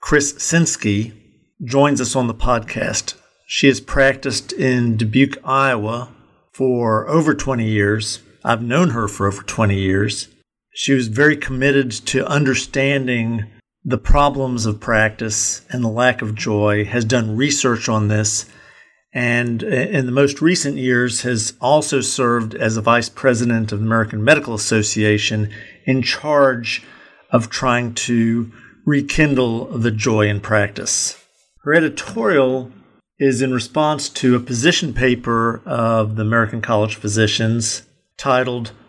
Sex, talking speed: male, 135 wpm